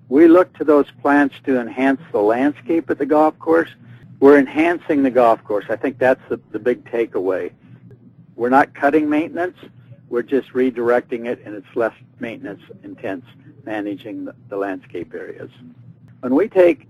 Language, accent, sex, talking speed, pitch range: English, American, male, 165 wpm, 125-150 Hz